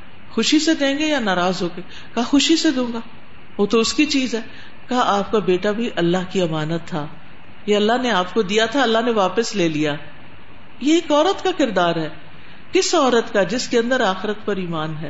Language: Urdu